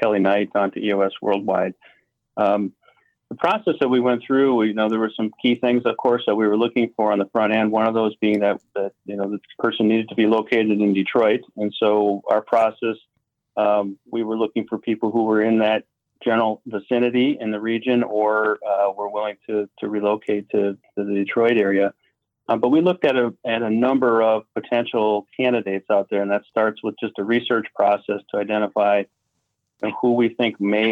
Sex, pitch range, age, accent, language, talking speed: male, 100-115 Hz, 40-59, American, English, 205 wpm